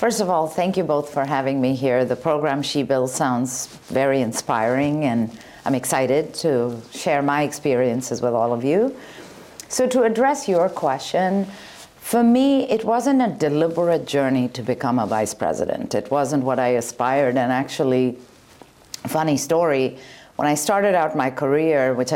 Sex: female